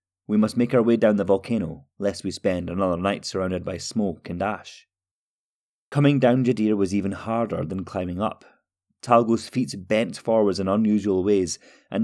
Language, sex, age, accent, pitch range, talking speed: English, male, 30-49, British, 90-115 Hz, 175 wpm